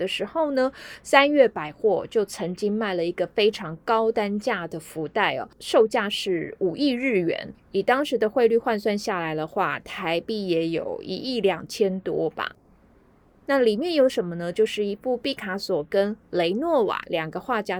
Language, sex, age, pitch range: Chinese, female, 20-39, 180-260 Hz